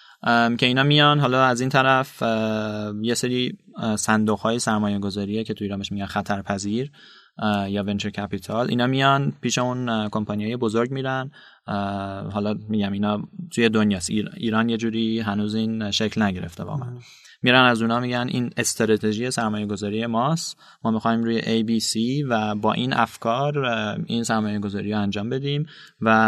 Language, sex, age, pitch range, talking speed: Persian, male, 20-39, 105-125 Hz, 155 wpm